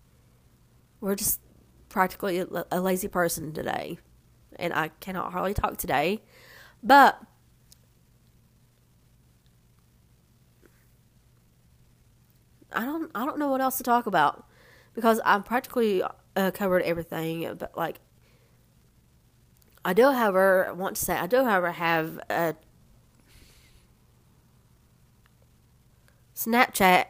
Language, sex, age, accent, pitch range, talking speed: English, female, 30-49, American, 165-195 Hz, 95 wpm